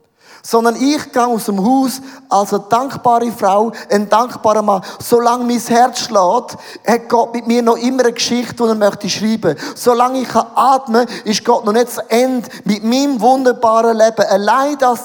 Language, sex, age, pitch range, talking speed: English, male, 30-49, 195-240 Hz, 175 wpm